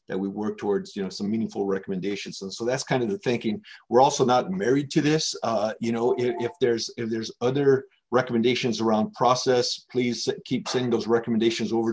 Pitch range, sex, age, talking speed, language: 110-140 Hz, male, 50-69, 200 wpm, English